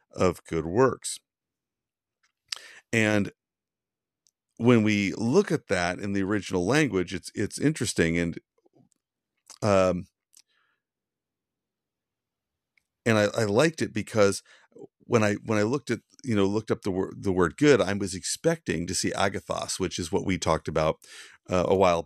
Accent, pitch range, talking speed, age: American, 90-110 Hz, 145 wpm, 50-69